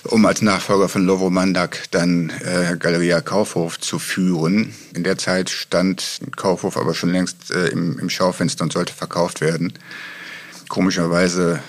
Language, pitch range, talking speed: German, 85-95 Hz, 150 wpm